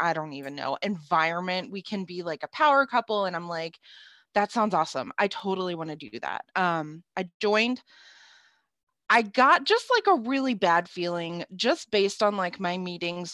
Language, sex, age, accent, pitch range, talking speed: English, female, 20-39, American, 165-225 Hz, 185 wpm